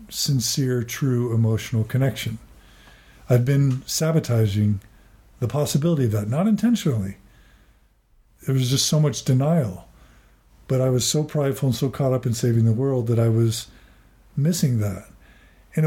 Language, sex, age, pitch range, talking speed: English, male, 50-69, 115-150 Hz, 145 wpm